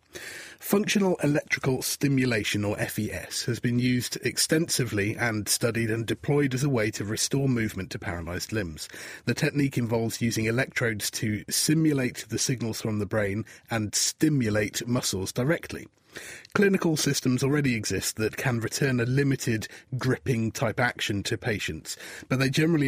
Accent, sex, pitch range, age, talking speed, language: British, male, 110-135 Hz, 30-49, 145 wpm, English